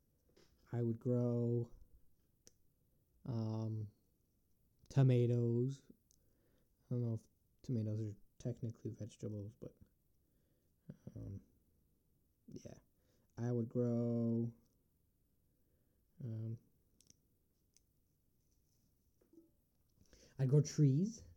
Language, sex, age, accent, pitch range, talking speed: English, male, 20-39, American, 95-125 Hz, 65 wpm